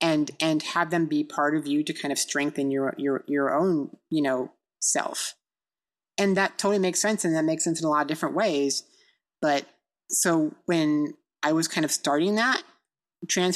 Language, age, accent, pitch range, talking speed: English, 30-49, American, 145-185 Hz, 195 wpm